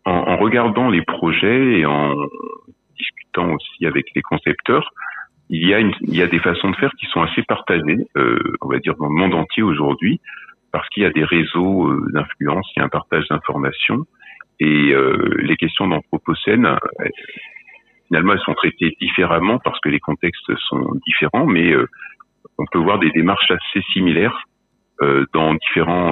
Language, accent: French, French